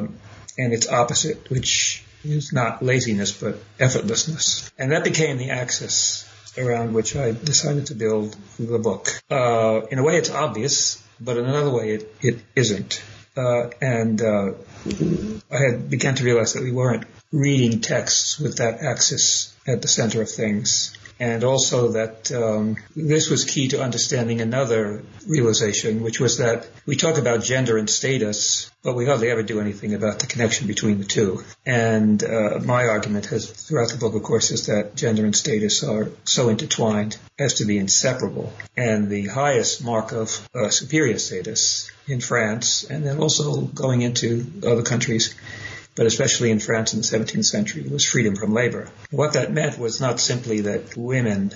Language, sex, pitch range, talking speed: English, male, 110-130 Hz, 170 wpm